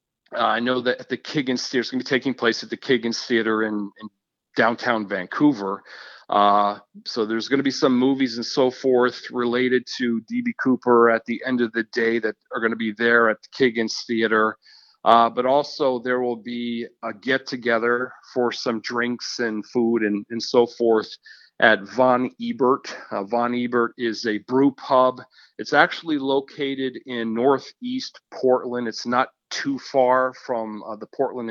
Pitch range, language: 115-130 Hz, English